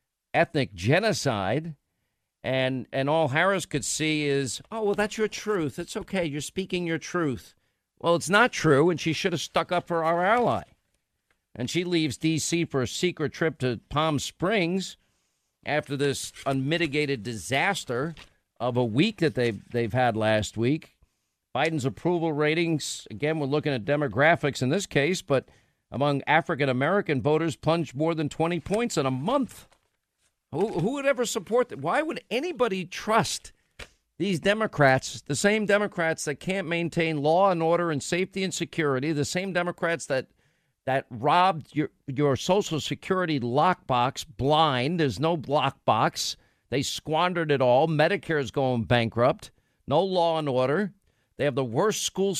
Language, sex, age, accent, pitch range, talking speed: English, male, 50-69, American, 135-175 Hz, 155 wpm